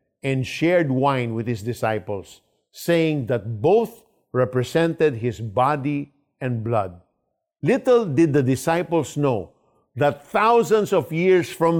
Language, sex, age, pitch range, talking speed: Filipino, male, 50-69, 120-175 Hz, 120 wpm